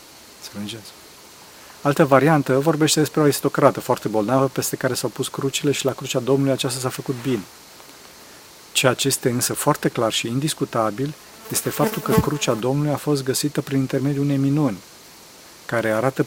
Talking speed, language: 160 wpm, Romanian